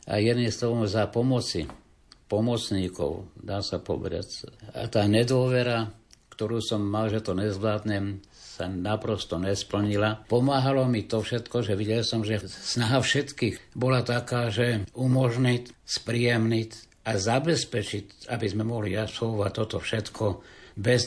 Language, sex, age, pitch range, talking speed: Slovak, male, 60-79, 105-120 Hz, 130 wpm